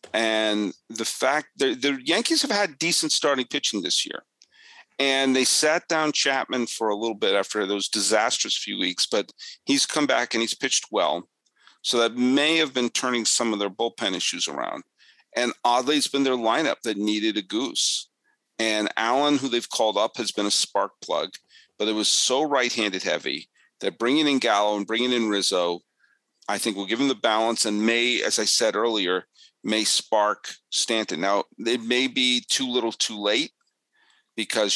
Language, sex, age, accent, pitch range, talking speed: English, male, 40-59, American, 100-130 Hz, 185 wpm